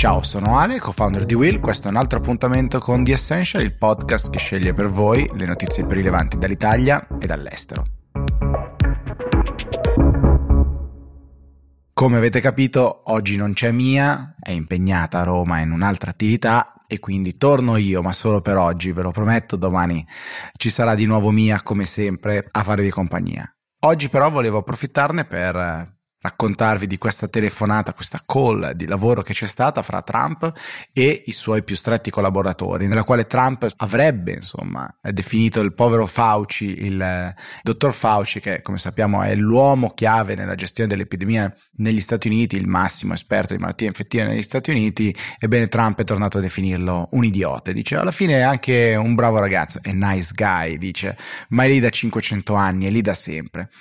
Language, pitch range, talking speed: Italian, 95-120 Hz, 170 wpm